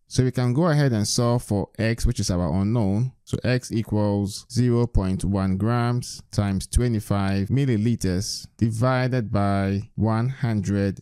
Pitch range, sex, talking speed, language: 100-125 Hz, male, 130 wpm, English